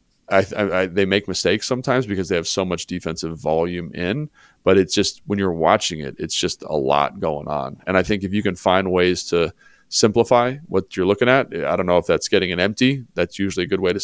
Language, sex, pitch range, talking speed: English, male, 85-100 Hz, 235 wpm